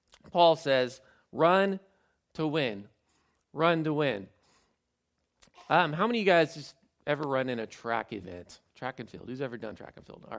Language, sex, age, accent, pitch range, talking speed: English, male, 40-59, American, 110-145 Hz, 180 wpm